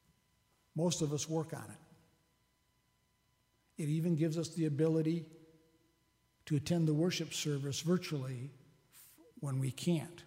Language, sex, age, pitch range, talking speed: English, male, 60-79, 130-160 Hz, 125 wpm